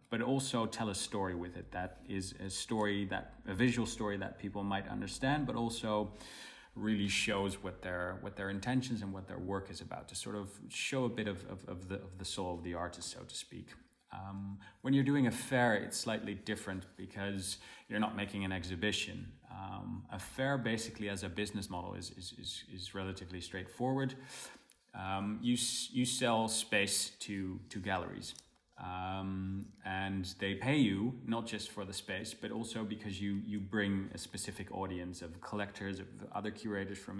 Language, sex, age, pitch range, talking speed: English, male, 30-49, 95-115 Hz, 185 wpm